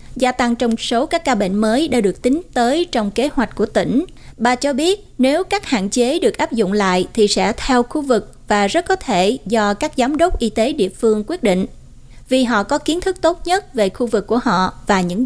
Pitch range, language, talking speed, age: 205-275 Hz, Vietnamese, 240 wpm, 20-39